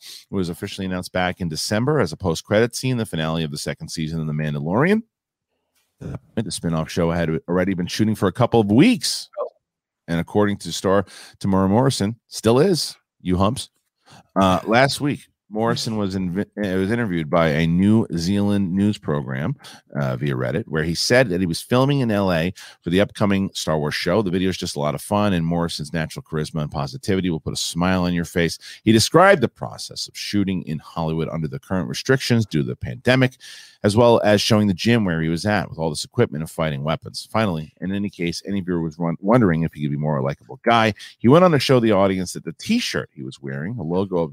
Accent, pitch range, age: American, 80-110 Hz, 40-59